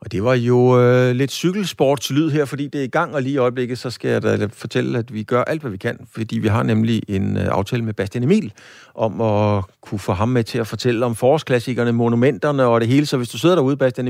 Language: Danish